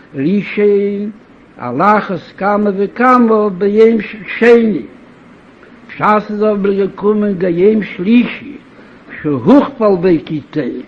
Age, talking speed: 60-79, 95 wpm